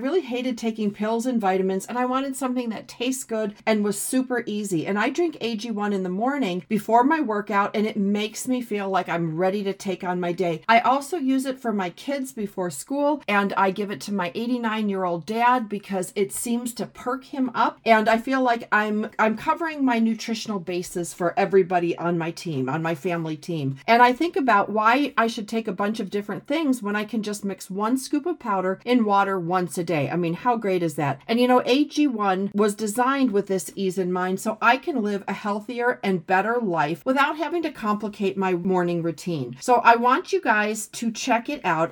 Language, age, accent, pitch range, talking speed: English, 40-59, American, 190-245 Hz, 220 wpm